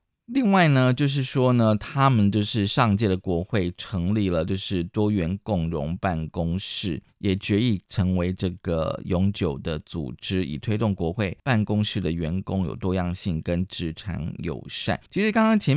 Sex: male